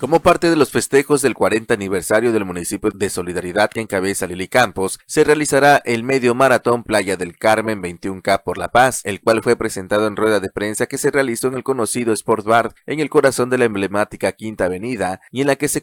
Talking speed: 215 wpm